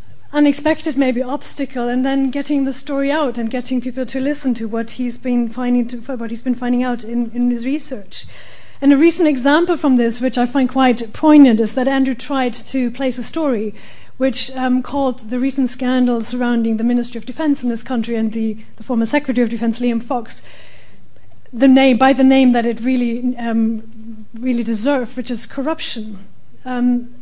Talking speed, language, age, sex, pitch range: 190 wpm, English, 30-49, female, 240-275 Hz